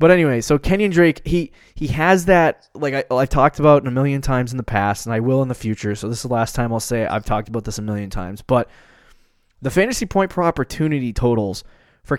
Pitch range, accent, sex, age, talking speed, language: 110-145 Hz, American, male, 20-39, 245 wpm, English